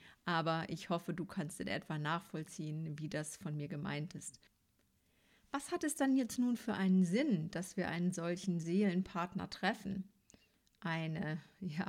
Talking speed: 155 wpm